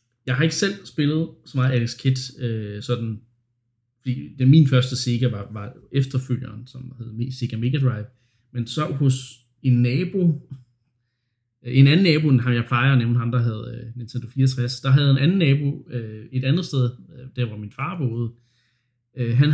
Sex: male